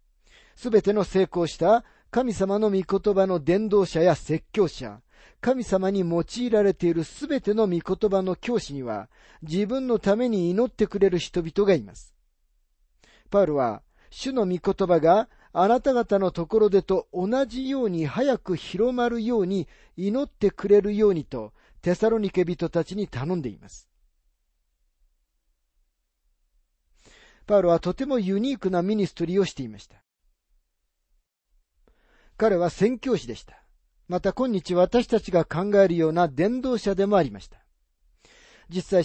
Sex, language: male, Japanese